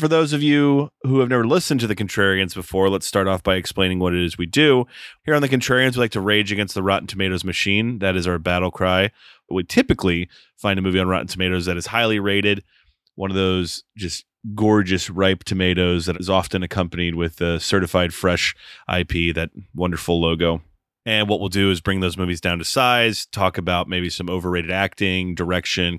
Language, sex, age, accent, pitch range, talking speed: English, male, 30-49, American, 85-105 Hz, 210 wpm